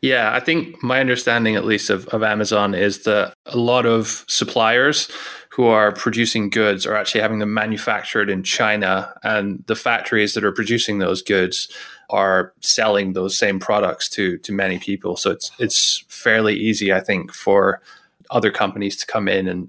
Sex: male